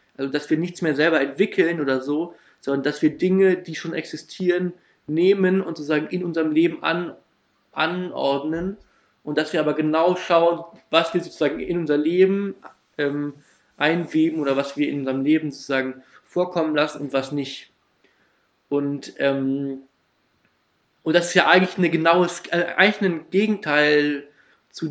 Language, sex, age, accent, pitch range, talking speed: German, male, 20-39, German, 140-175 Hz, 150 wpm